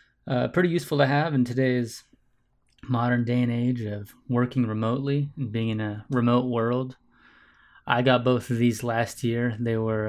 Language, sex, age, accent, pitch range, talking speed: English, male, 20-39, American, 120-140 Hz, 170 wpm